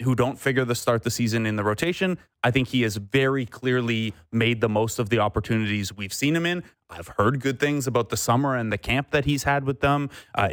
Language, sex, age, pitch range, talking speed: English, male, 30-49, 105-130 Hz, 240 wpm